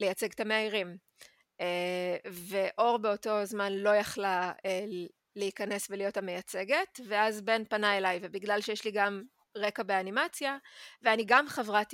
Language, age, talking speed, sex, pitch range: Hebrew, 20-39, 120 wpm, female, 190-230 Hz